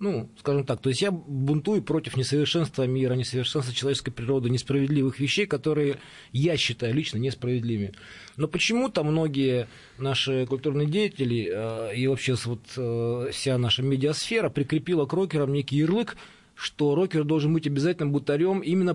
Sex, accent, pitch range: male, native, 125-155 Hz